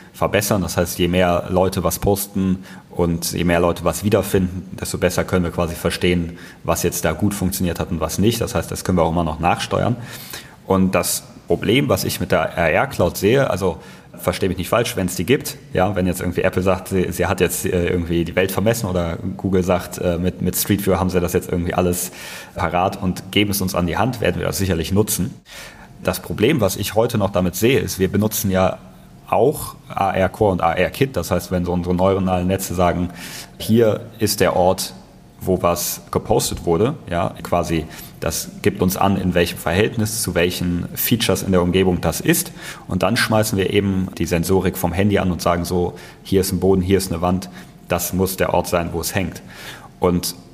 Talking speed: 210 wpm